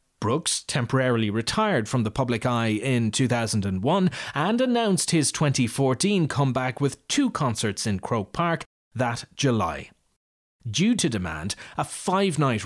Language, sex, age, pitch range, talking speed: English, male, 30-49, 115-160 Hz, 130 wpm